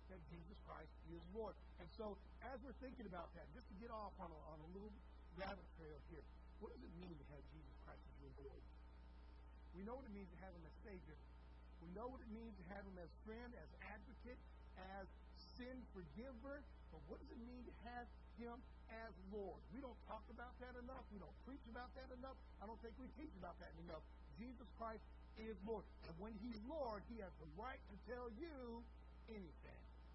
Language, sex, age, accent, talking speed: English, male, 60-79, American, 210 wpm